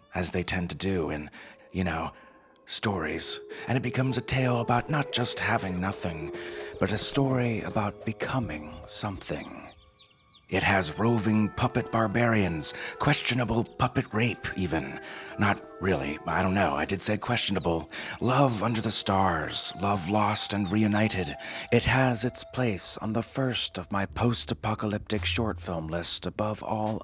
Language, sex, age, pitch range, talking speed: English, male, 30-49, 85-115 Hz, 145 wpm